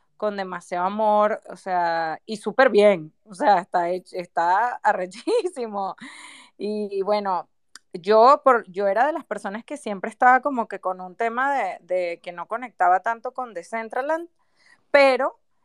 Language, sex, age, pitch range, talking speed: Spanish, female, 20-39, 195-240 Hz, 155 wpm